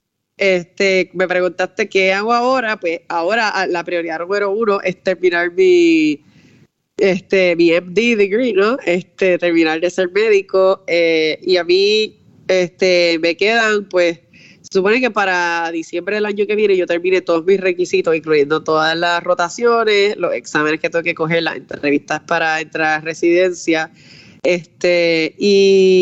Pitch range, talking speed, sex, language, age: 175-220 Hz, 150 wpm, female, Spanish, 20-39